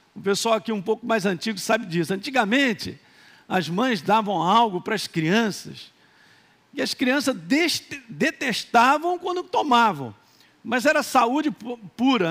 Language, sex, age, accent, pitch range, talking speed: Portuguese, male, 50-69, Brazilian, 155-235 Hz, 130 wpm